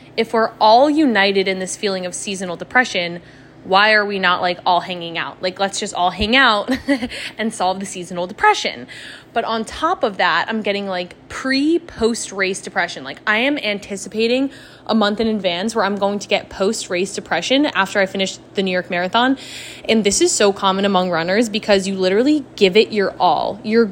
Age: 20-39